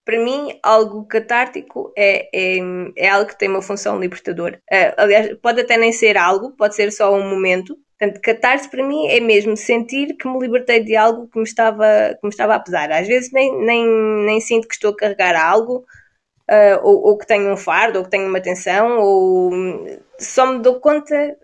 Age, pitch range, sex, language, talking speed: 20-39, 205-260 Hz, female, Portuguese, 200 wpm